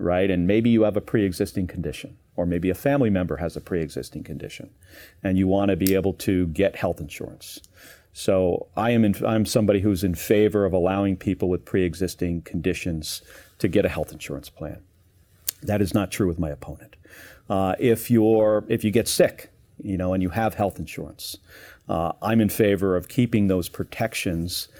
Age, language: 40-59, English